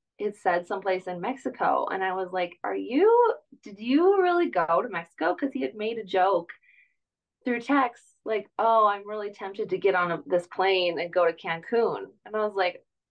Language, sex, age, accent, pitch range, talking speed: English, female, 20-39, American, 190-235 Hz, 195 wpm